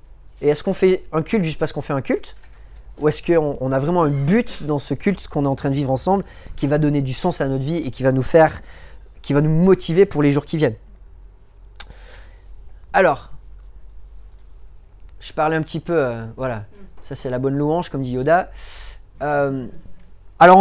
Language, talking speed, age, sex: French, 205 wpm, 30-49, male